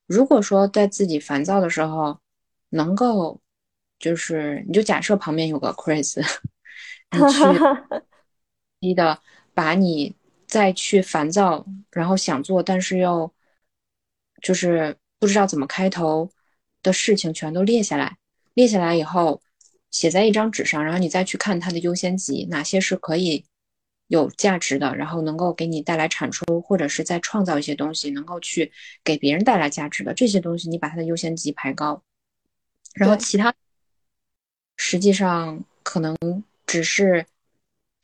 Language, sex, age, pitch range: Chinese, female, 20-39, 155-195 Hz